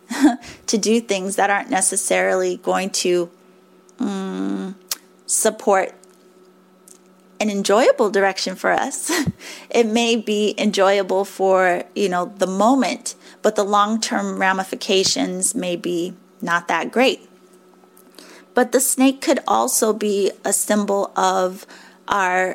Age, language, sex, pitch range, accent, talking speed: 30-49, English, female, 185-210 Hz, American, 115 wpm